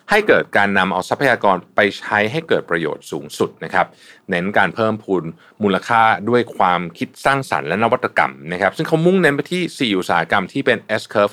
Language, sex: Thai, male